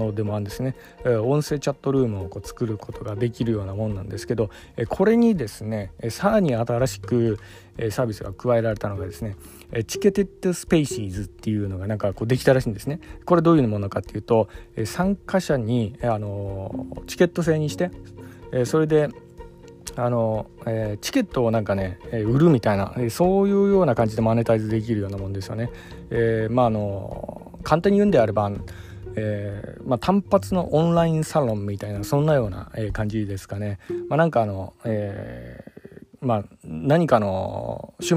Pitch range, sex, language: 105-130 Hz, male, Japanese